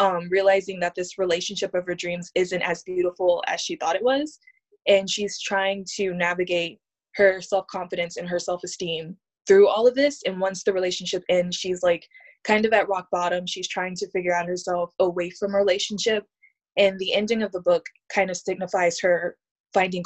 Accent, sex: American, female